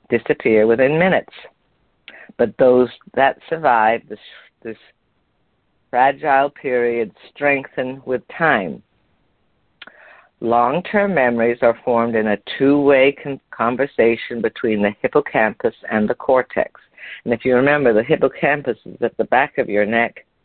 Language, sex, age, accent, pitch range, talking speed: English, female, 50-69, American, 110-135 Hz, 125 wpm